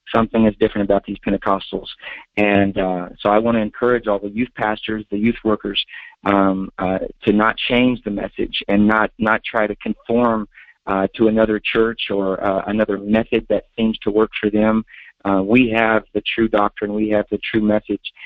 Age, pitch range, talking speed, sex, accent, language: 40-59, 100-115 Hz, 190 wpm, male, American, English